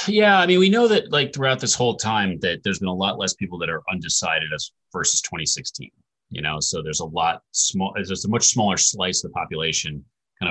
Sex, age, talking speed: male, 30-49, 230 wpm